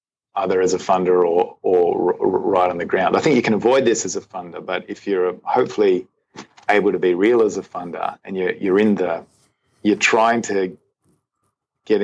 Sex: male